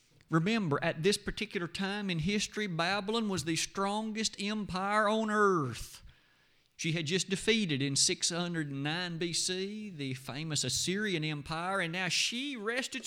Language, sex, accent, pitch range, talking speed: English, male, American, 135-180 Hz, 135 wpm